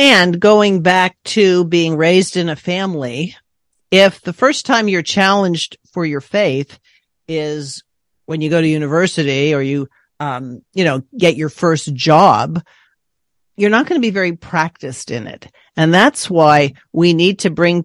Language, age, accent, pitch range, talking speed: English, 50-69, American, 150-210 Hz, 165 wpm